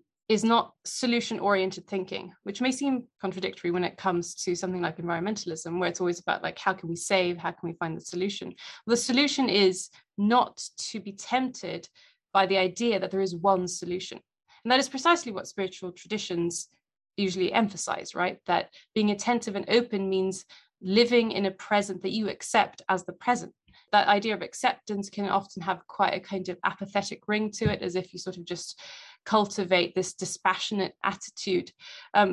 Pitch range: 185-230 Hz